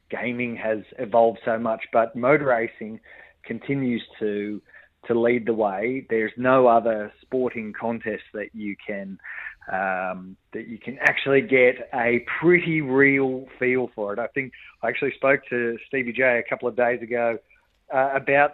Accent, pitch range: Australian, 115-135 Hz